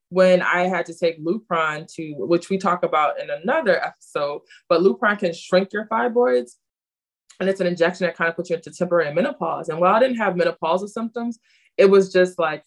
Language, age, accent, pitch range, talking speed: English, 20-39, American, 145-185 Hz, 205 wpm